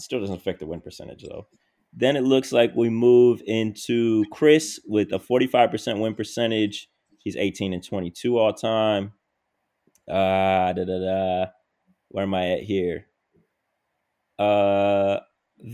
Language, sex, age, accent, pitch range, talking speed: English, male, 20-39, American, 95-120 Hz, 135 wpm